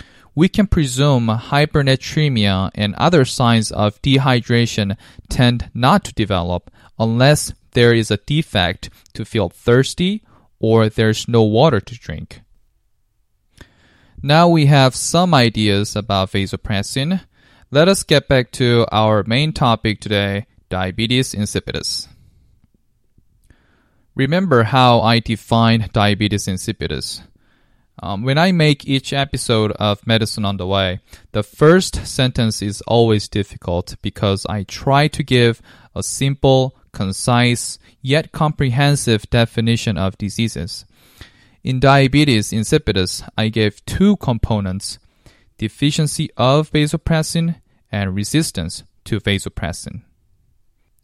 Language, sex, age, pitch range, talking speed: English, male, 20-39, 105-135 Hz, 110 wpm